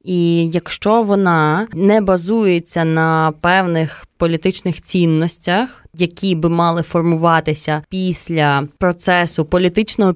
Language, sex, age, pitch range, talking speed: Ukrainian, female, 20-39, 165-195 Hz, 95 wpm